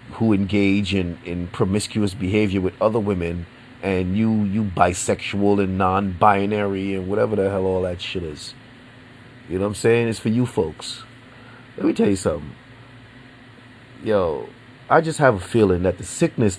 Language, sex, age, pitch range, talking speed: English, male, 30-49, 100-125 Hz, 165 wpm